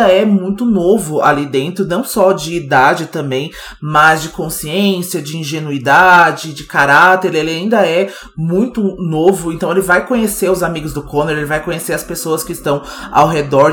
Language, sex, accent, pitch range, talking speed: Portuguese, male, Brazilian, 145-175 Hz, 170 wpm